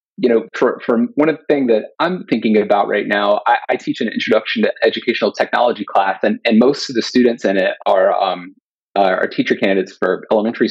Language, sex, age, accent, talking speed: English, male, 30-49, American, 220 wpm